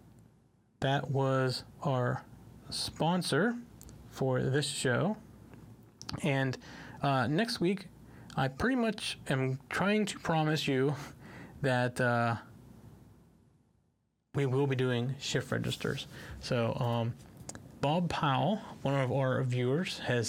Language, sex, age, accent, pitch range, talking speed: English, male, 30-49, American, 125-145 Hz, 105 wpm